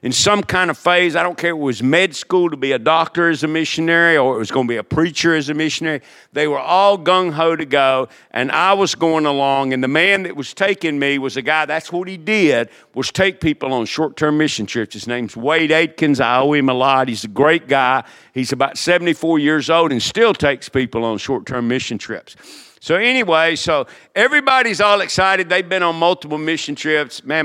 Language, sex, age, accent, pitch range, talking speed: English, male, 50-69, American, 130-170 Hz, 220 wpm